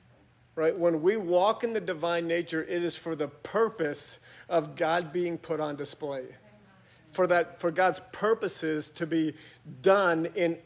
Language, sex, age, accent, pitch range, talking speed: English, male, 40-59, American, 150-190 Hz, 160 wpm